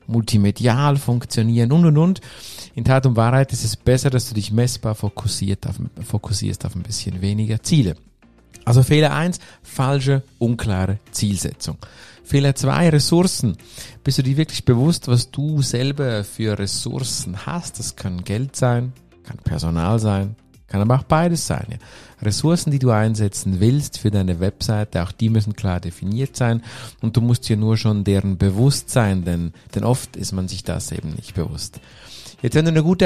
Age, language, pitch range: 50-69, German, 105-135 Hz